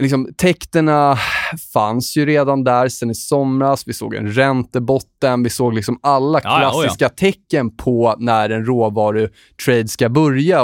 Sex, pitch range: male, 115-135 Hz